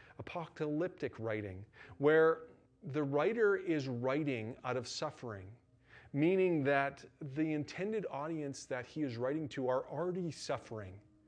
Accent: American